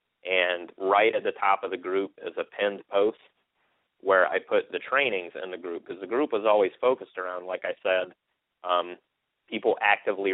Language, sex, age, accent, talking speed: English, male, 30-49, American, 190 wpm